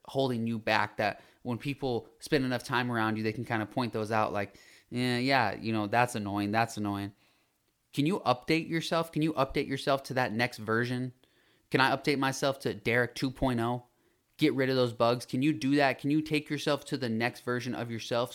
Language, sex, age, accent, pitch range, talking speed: English, male, 20-39, American, 115-145 Hz, 215 wpm